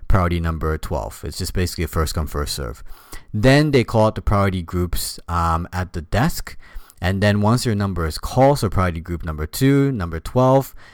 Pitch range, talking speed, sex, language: 80-105 Hz, 195 wpm, male, English